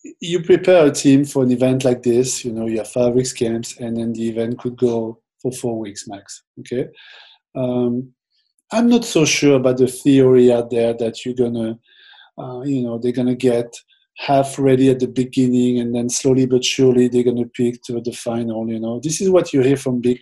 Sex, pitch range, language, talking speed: male, 120-140 Hz, English, 215 wpm